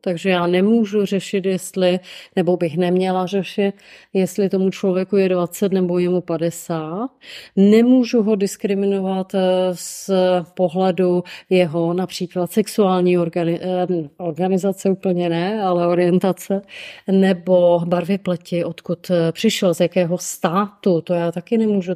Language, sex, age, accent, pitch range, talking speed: Czech, female, 30-49, native, 175-195 Hz, 115 wpm